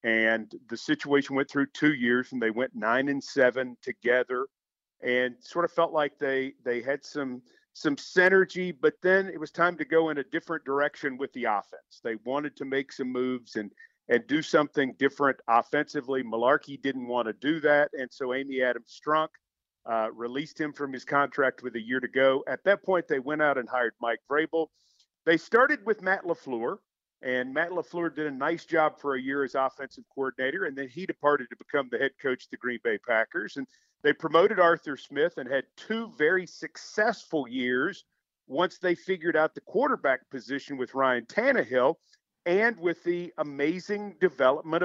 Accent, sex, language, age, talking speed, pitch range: American, male, English, 50-69, 190 wpm, 135-170 Hz